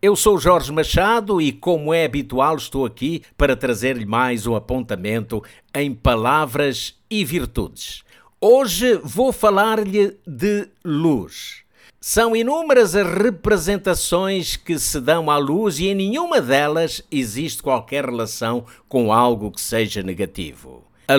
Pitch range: 125-210 Hz